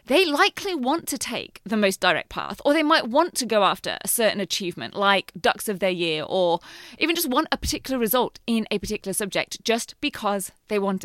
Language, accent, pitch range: English, British, 210-285 Hz